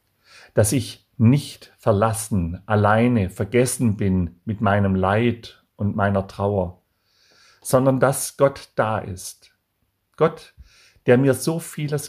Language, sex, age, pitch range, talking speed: German, male, 50-69, 95-125 Hz, 115 wpm